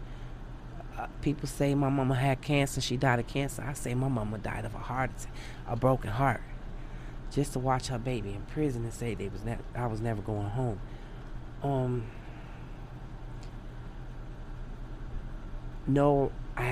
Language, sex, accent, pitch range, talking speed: English, male, American, 115-140 Hz, 155 wpm